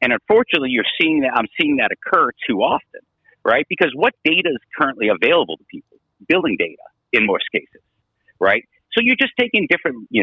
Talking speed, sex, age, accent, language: 190 wpm, male, 50-69, American, English